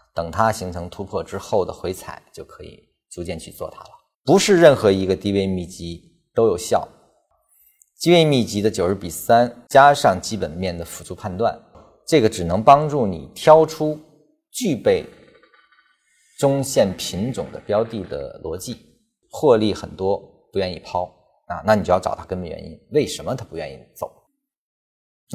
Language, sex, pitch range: Chinese, male, 90-135 Hz